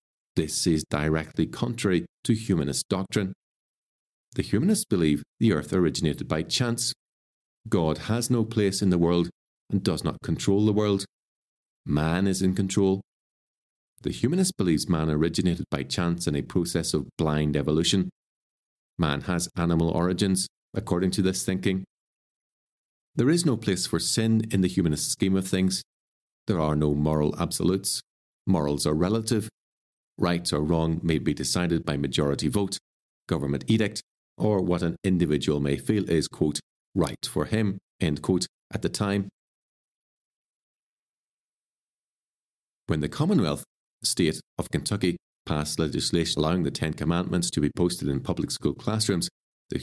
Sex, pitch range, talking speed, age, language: male, 80-100 Hz, 145 wpm, 40-59, English